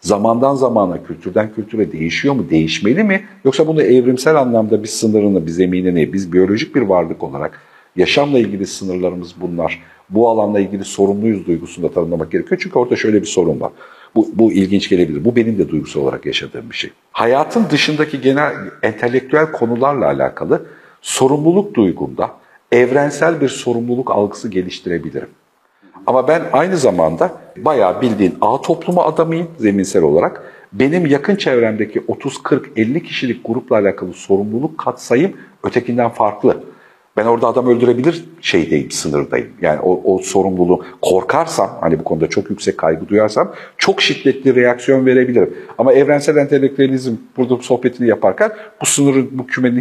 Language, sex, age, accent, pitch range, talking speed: Turkish, male, 50-69, native, 100-145 Hz, 140 wpm